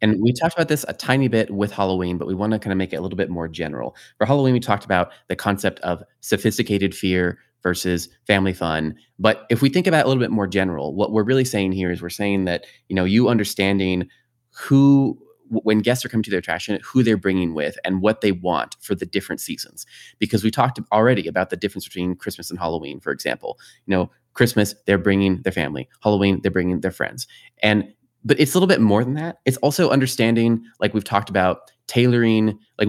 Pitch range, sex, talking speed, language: 95-115 Hz, male, 225 wpm, English